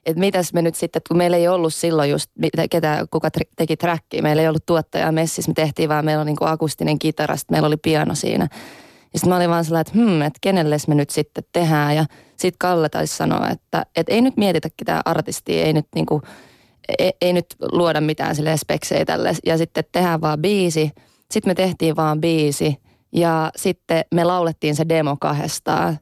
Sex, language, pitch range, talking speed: female, Finnish, 155-175 Hz, 195 wpm